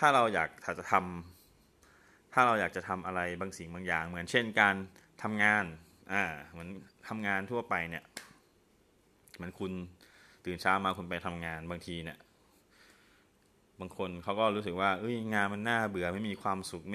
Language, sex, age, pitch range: Thai, male, 20-39, 85-105 Hz